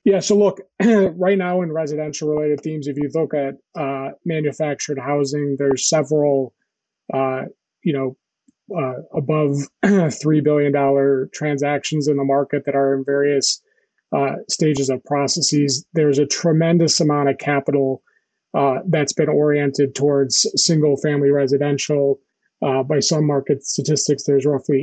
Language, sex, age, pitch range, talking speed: English, male, 30-49, 140-160 Hz, 140 wpm